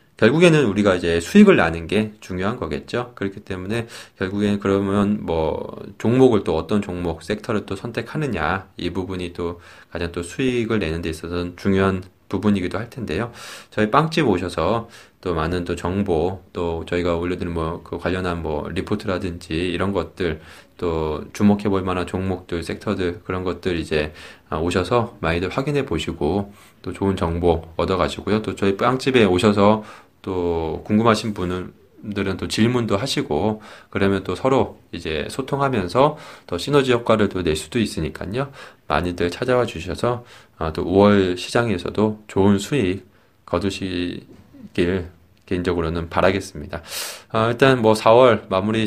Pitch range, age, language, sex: 90-110 Hz, 20-39, Korean, male